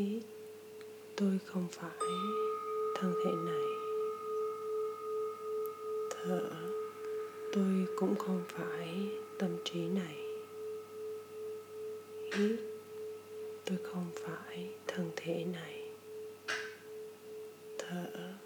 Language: Vietnamese